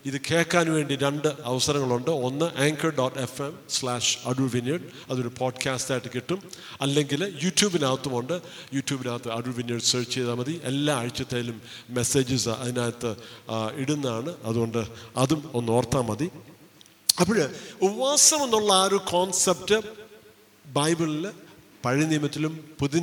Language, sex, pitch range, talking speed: Malayalam, male, 130-175 Hz, 115 wpm